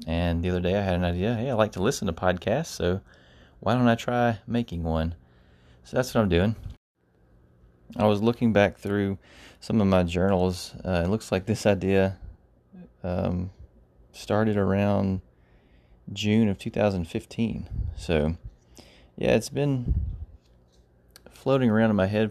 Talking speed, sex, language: 155 wpm, male, English